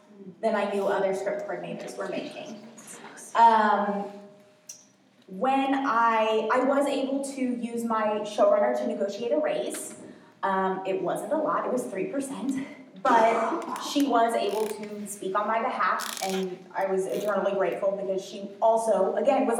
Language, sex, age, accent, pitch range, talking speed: English, female, 20-39, American, 195-230 Hz, 150 wpm